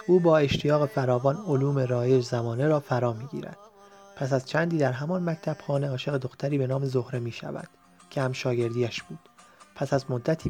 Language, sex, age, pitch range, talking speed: Persian, male, 30-49, 125-155 Hz, 175 wpm